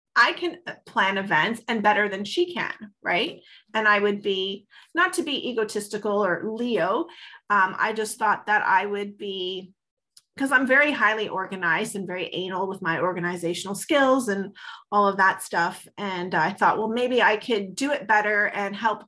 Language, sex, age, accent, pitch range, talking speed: English, female, 30-49, American, 195-255 Hz, 180 wpm